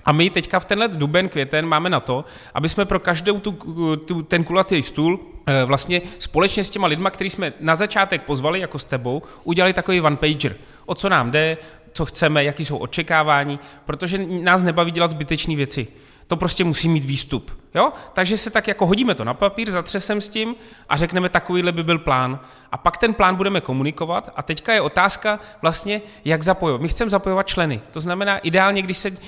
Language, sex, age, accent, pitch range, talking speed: Czech, male, 30-49, native, 150-195 Hz, 195 wpm